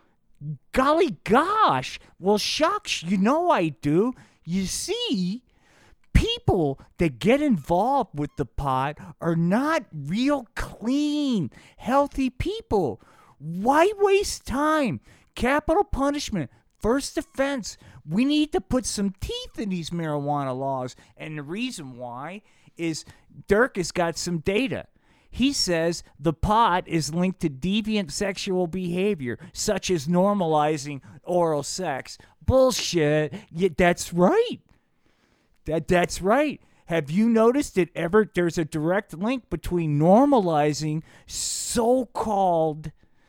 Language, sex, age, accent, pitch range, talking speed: English, male, 40-59, American, 150-225 Hz, 115 wpm